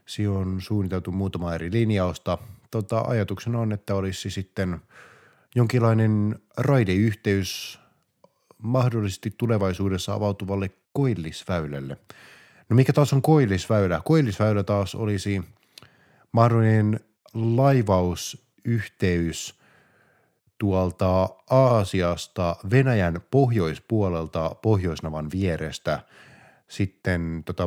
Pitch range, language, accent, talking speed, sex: 90-120 Hz, Finnish, native, 80 wpm, male